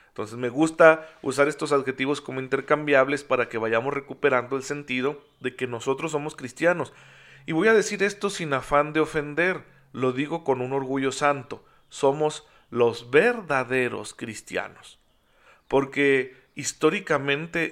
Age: 40-59